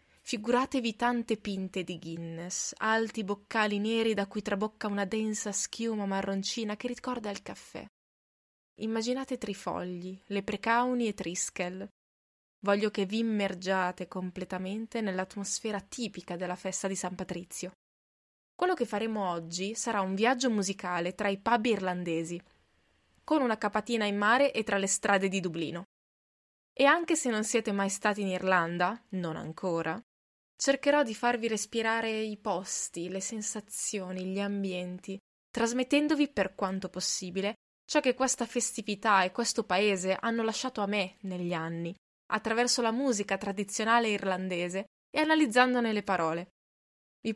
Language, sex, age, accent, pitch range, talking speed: Italian, female, 20-39, native, 190-230 Hz, 135 wpm